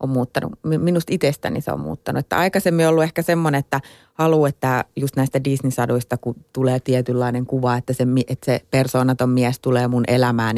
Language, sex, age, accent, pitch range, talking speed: Finnish, female, 30-49, native, 125-140 Hz, 180 wpm